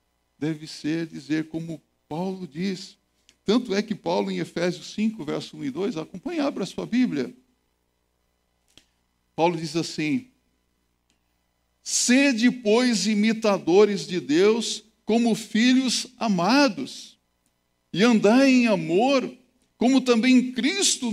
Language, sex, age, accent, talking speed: Portuguese, male, 60-79, Brazilian, 115 wpm